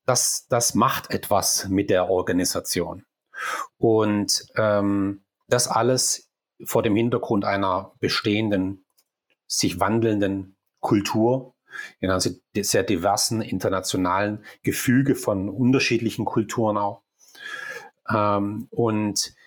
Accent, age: German, 30-49